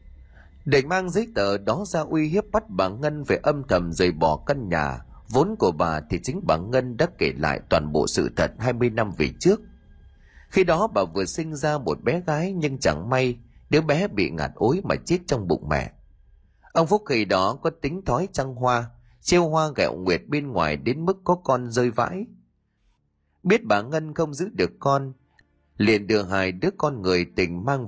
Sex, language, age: male, Vietnamese, 30-49